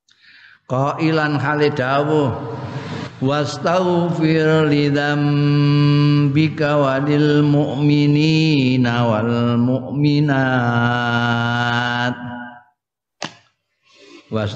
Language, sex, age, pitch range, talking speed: Indonesian, male, 50-69, 115-140 Hz, 55 wpm